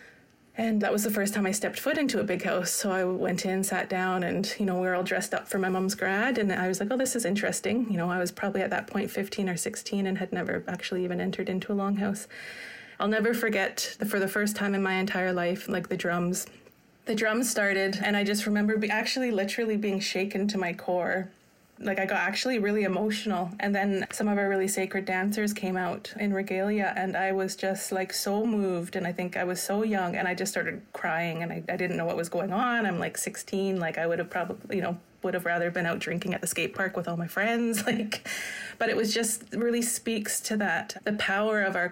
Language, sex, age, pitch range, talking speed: English, female, 20-39, 185-210 Hz, 245 wpm